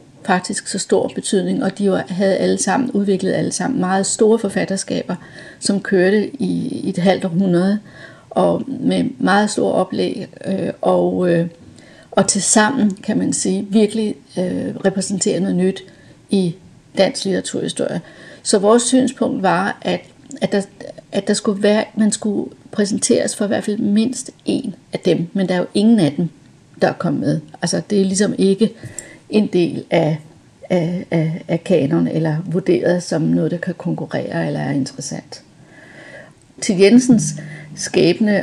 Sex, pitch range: female, 170-210 Hz